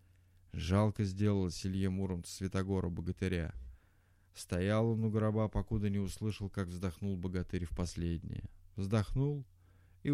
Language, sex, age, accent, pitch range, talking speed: Russian, male, 20-39, native, 90-110 Hz, 120 wpm